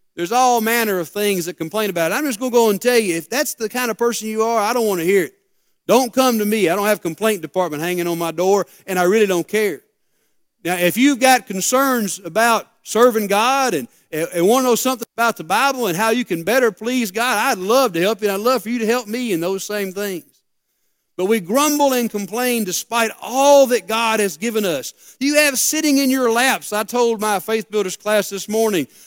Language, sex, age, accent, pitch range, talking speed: English, male, 40-59, American, 195-260 Hz, 240 wpm